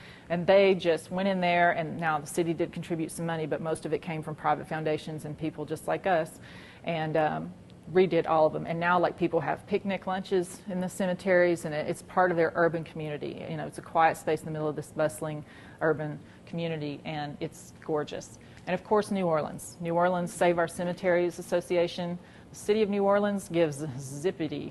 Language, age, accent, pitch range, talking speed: English, 40-59, American, 160-185 Hz, 205 wpm